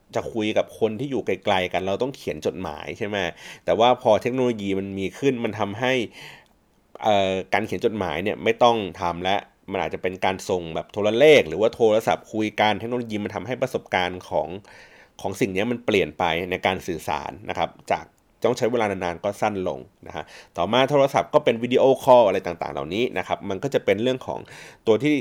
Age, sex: 30-49, male